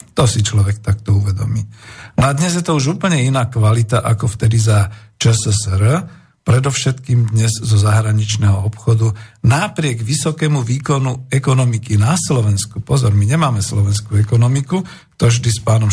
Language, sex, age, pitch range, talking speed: Slovak, male, 50-69, 110-130 Hz, 145 wpm